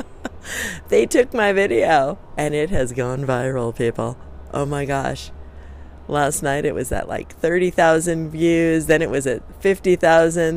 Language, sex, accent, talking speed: English, female, American, 150 wpm